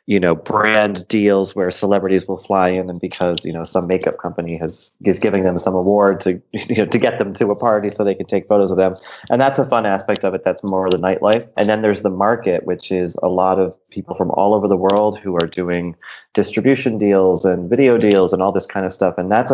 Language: English